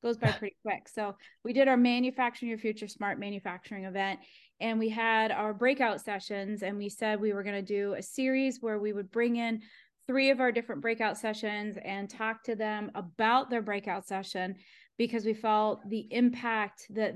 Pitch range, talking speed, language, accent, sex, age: 205-230 Hz, 190 wpm, English, American, female, 30-49